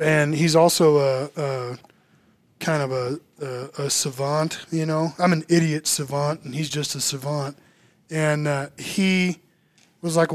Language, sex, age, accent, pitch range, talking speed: English, male, 20-39, American, 145-170 Hz, 150 wpm